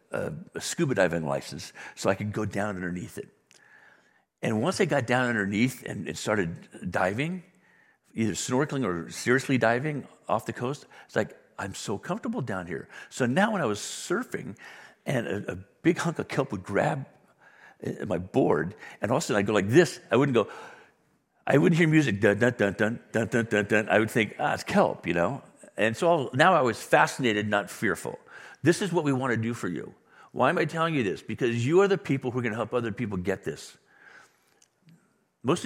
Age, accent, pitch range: 60-79, American, 105-145 Hz